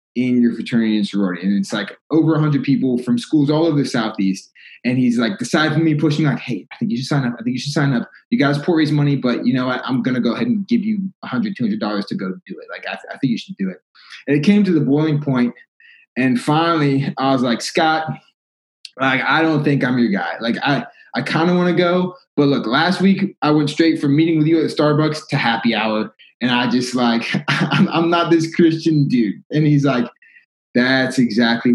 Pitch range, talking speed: 120-165 Hz, 250 wpm